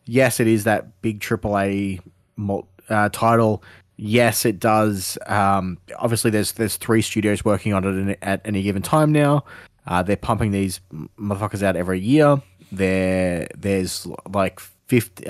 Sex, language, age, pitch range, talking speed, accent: male, English, 20-39, 95-115 Hz, 150 wpm, Australian